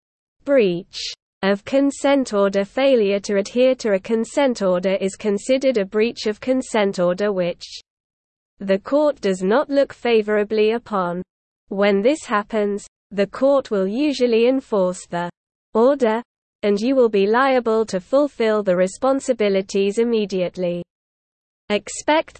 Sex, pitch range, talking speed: female, 195-250 Hz, 125 wpm